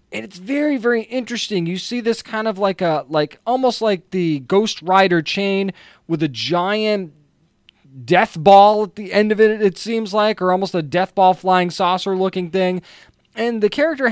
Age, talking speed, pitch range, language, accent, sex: 20-39, 185 wpm, 170-215 Hz, English, American, male